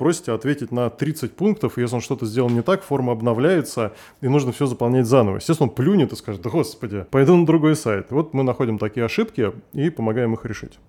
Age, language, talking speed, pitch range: 20-39, Russian, 205 wpm, 120-155 Hz